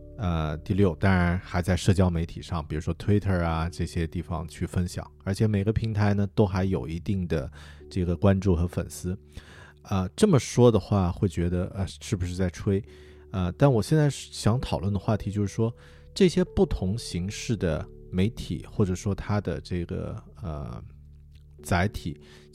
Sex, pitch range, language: male, 85-105 Hz, Chinese